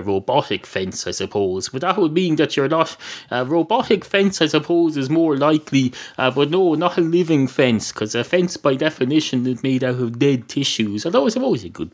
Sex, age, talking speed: male, 30-49, 210 wpm